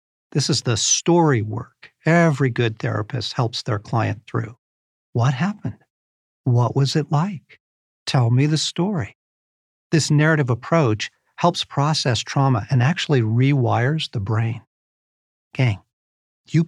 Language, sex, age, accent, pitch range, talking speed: English, male, 50-69, American, 120-160 Hz, 125 wpm